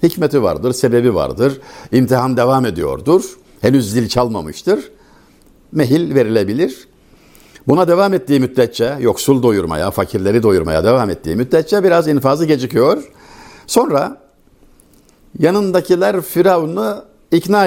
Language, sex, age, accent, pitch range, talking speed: Turkish, male, 60-79, native, 110-145 Hz, 100 wpm